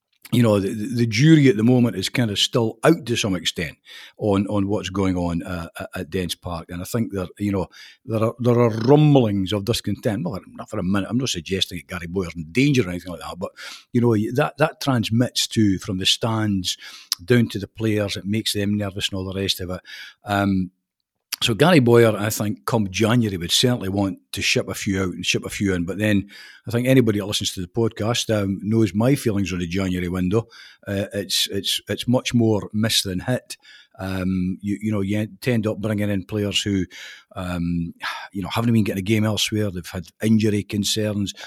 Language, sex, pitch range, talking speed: English, male, 95-120 Hz, 220 wpm